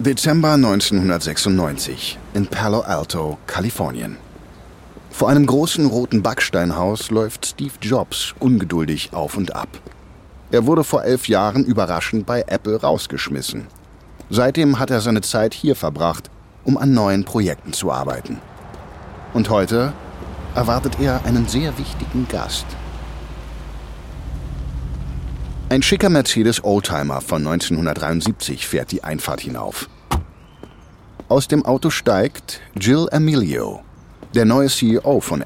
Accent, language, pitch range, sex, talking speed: German, German, 80-130 Hz, male, 115 wpm